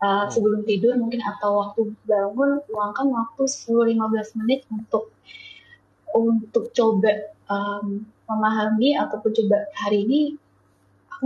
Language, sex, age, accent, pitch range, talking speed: Indonesian, female, 20-39, native, 200-235 Hz, 110 wpm